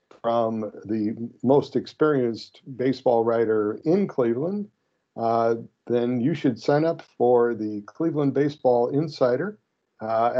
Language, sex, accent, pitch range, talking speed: English, male, American, 115-150 Hz, 115 wpm